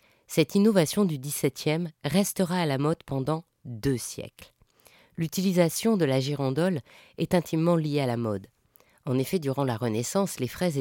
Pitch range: 125-170 Hz